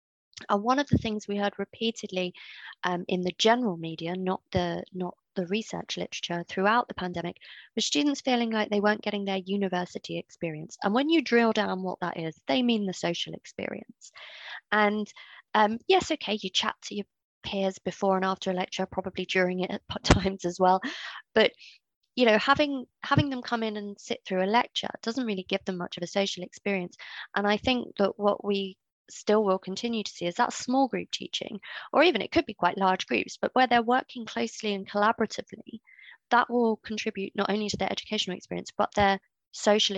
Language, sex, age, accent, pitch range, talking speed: English, female, 20-39, British, 185-220 Hz, 195 wpm